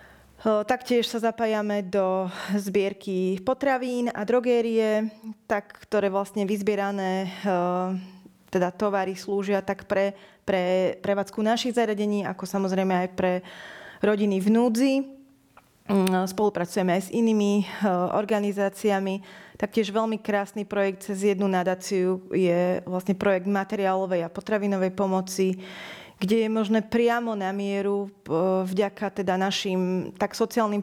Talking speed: 110 wpm